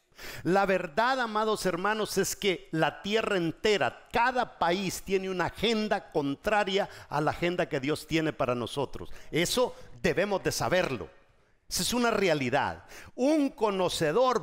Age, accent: 50-69, Mexican